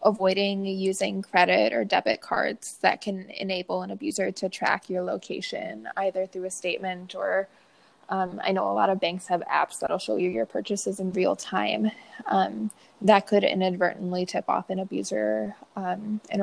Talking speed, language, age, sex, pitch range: 170 wpm, English, 20-39, female, 185-210 Hz